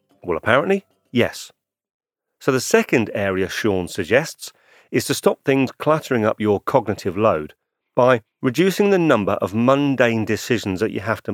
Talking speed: 155 wpm